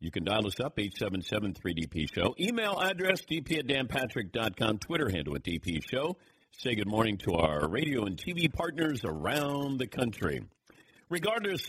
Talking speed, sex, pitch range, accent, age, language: 145 wpm, male, 110-145 Hz, American, 50-69, English